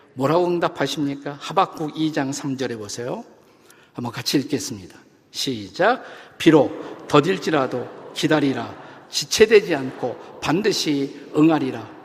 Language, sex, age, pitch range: Korean, male, 50-69, 145-175 Hz